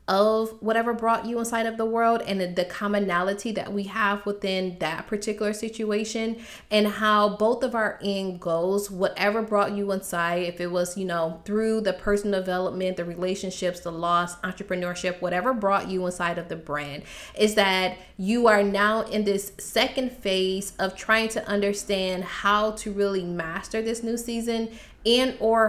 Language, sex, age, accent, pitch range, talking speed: English, female, 20-39, American, 180-215 Hz, 170 wpm